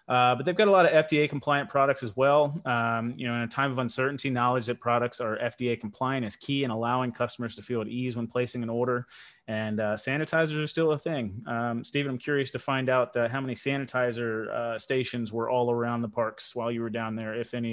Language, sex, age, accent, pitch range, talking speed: English, male, 30-49, American, 105-125 Hz, 240 wpm